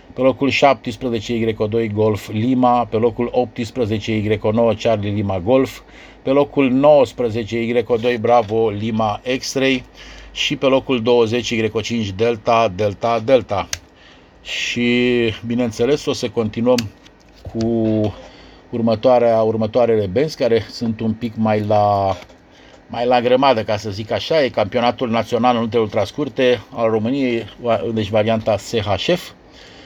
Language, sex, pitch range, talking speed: Romanian, male, 105-125 Hz, 115 wpm